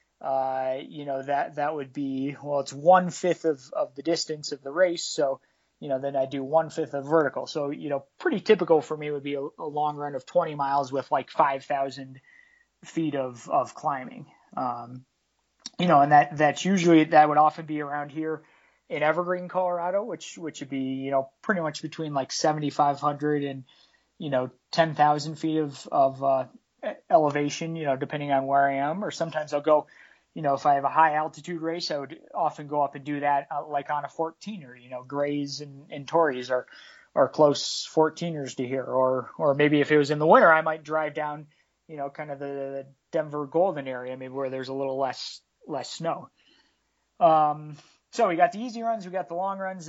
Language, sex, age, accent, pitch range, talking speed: English, male, 20-39, American, 140-165 Hz, 210 wpm